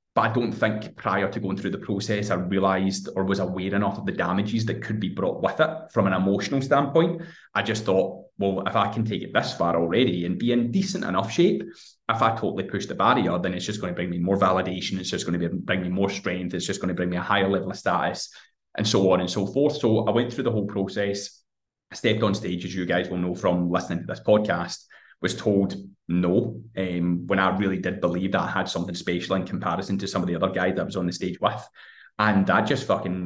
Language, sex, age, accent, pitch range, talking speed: English, male, 20-39, British, 90-105 Hz, 255 wpm